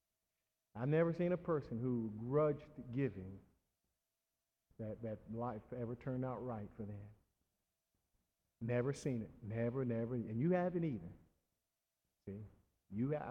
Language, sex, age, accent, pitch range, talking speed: English, male, 50-69, American, 110-165 Hz, 120 wpm